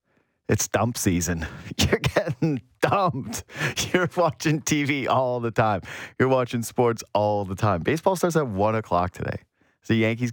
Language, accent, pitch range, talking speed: English, American, 100-145 Hz, 155 wpm